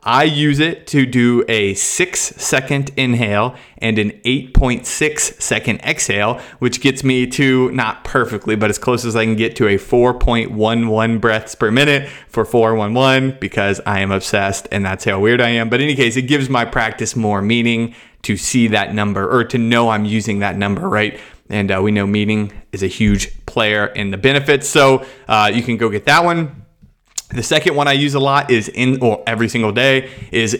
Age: 30-49